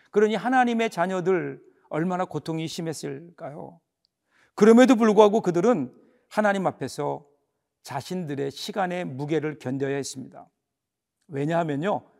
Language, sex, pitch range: Korean, male, 155-210 Hz